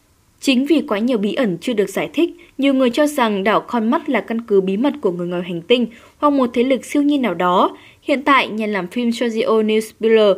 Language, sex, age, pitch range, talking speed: Vietnamese, female, 10-29, 210-270 Hz, 245 wpm